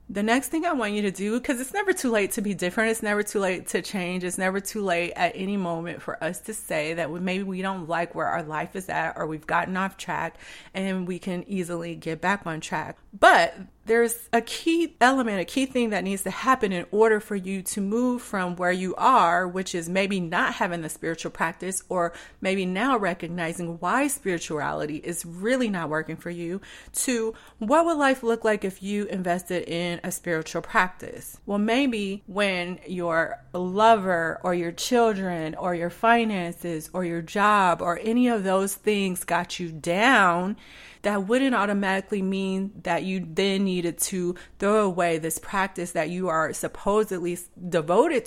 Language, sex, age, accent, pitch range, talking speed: English, female, 30-49, American, 175-215 Hz, 190 wpm